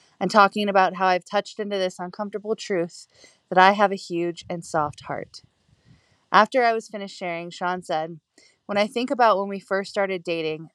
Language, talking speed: English, 190 wpm